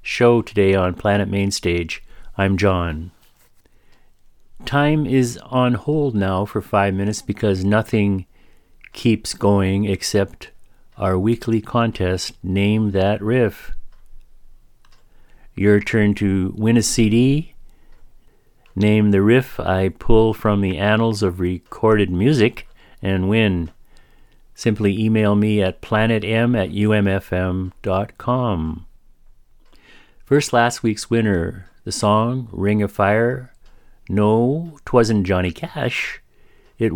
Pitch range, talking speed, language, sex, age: 95-115 Hz, 105 wpm, English, male, 50-69